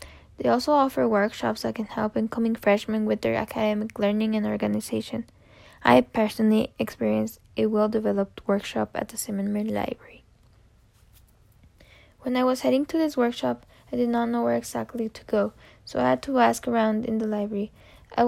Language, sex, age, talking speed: English, female, 10-29, 165 wpm